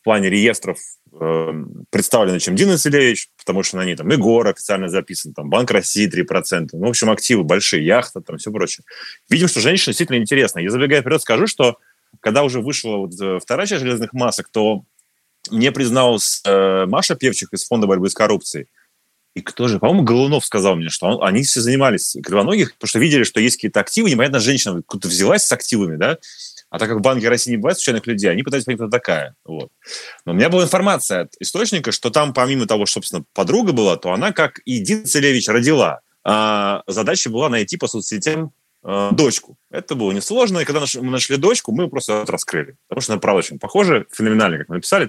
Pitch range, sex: 105-145 Hz, male